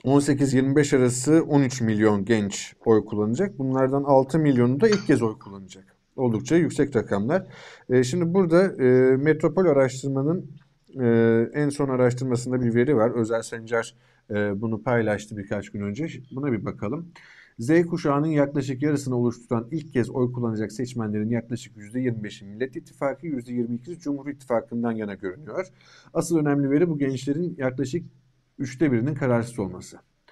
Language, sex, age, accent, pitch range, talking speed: Turkish, male, 50-69, native, 115-140 Hz, 135 wpm